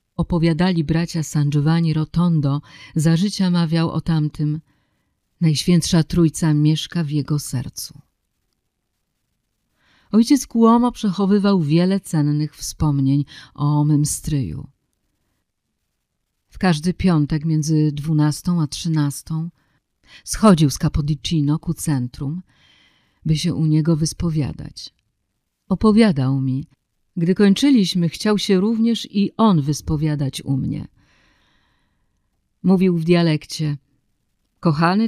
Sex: female